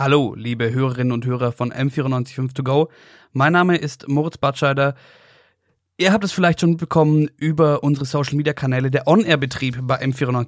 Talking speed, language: 155 wpm, German